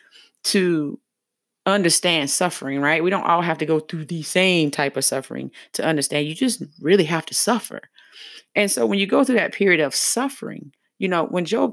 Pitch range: 165-235 Hz